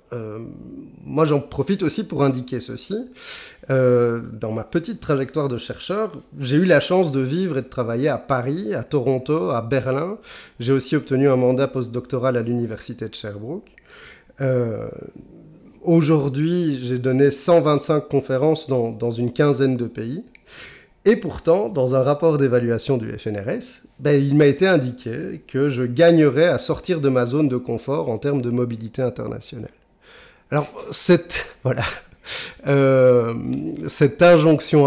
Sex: male